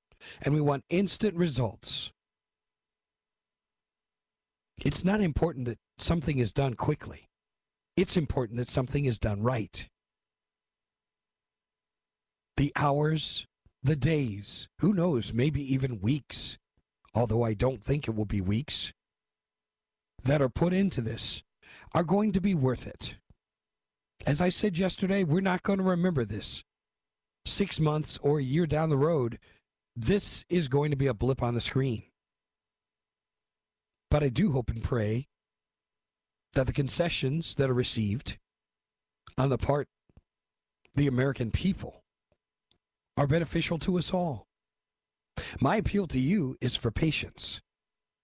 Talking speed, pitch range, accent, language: 130 wpm, 105-150 Hz, American, English